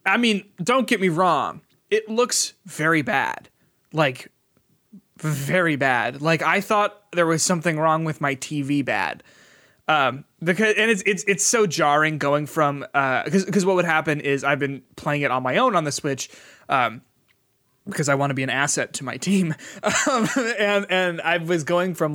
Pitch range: 140-185 Hz